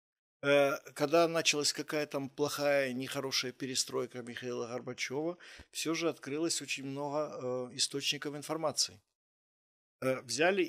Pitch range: 125-155 Hz